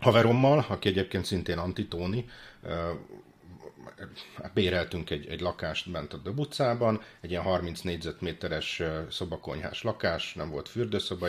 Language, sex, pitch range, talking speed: Hungarian, male, 85-120 Hz, 115 wpm